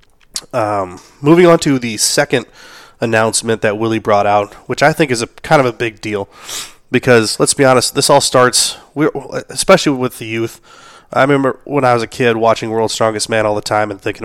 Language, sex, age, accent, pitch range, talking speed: English, male, 20-39, American, 105-125 Hz, 205 wpm